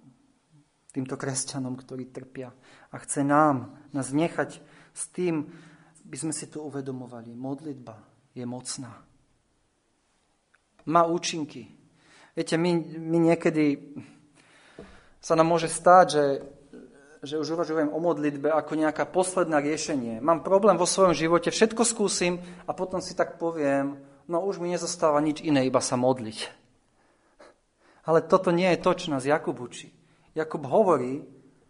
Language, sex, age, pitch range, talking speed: Slovak, male, 40-59, 130-165 Hz, 130 wpm